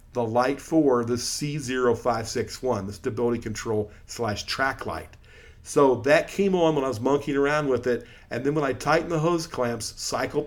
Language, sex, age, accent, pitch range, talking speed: English, male, 50-69, American, 120-155 Hz, 180 wpm